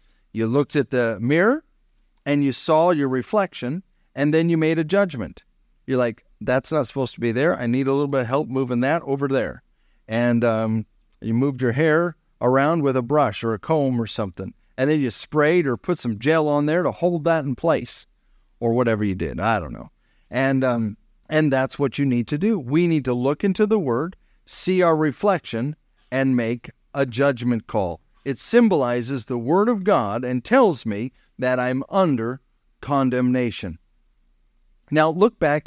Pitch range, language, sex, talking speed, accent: 120-165 Hz, English, male, 190 wpm, American